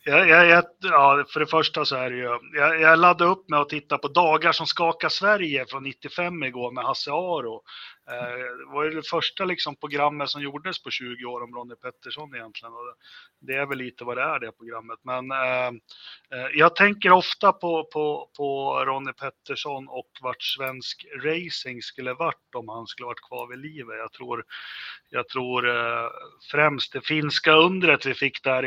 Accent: native